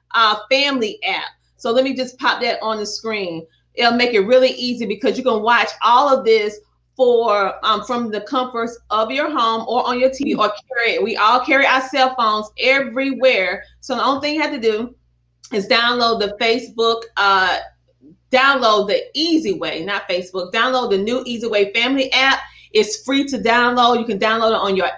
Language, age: English, 30-49